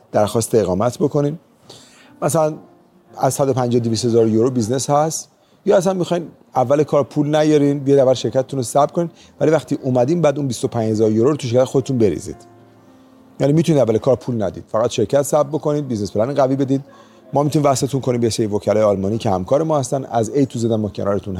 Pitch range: 115-150 Hz